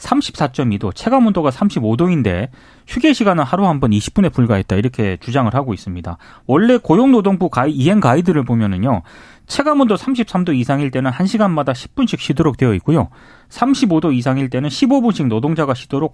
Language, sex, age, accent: Korean, male, 30-49, native